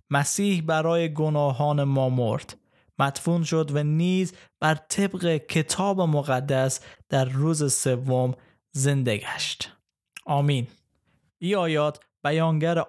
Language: Persian